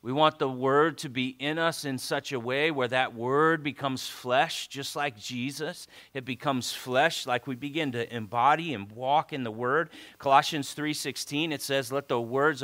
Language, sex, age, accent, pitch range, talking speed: English, male, 40-59, American, 135-170 Hz, 190 wpm